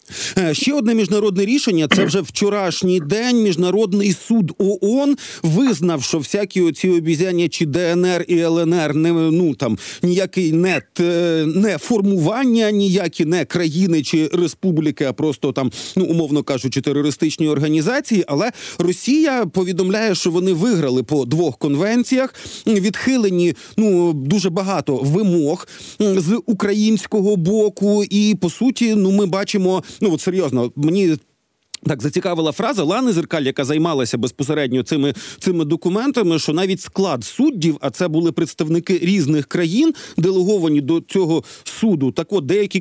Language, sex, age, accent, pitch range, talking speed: Ukrainian, male, 40-59, native, 160-200 Hz, 130 wpm